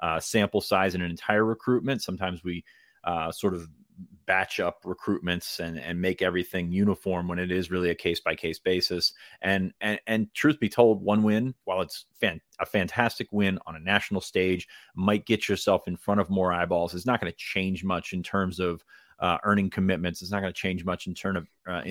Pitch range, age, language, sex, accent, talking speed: 90-100 Hz, 30-49, English, male, American, 210 wpm